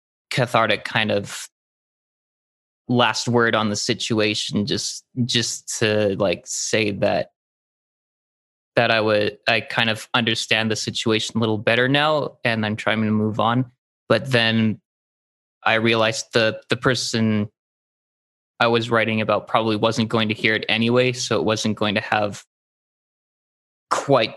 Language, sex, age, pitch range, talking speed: English, male, 20-39, 110-125 Hz, 145 wpm